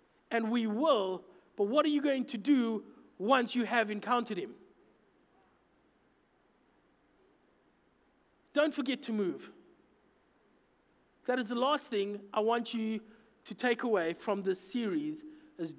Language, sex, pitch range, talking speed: English, male, 215-260 Hz, 130 wpm